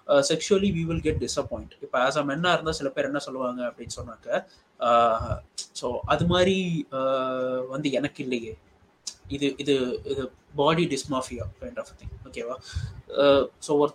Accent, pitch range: native, 140-175 Hz